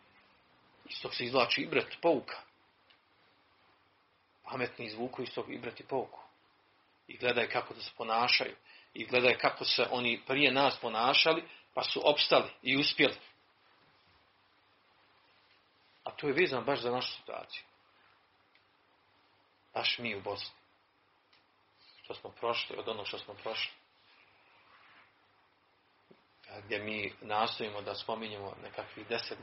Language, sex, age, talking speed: Croatian, male, 40-59, 120 wpm